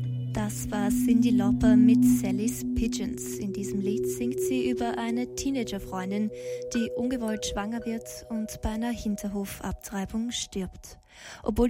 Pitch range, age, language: 200-235 Hz, 20-39, German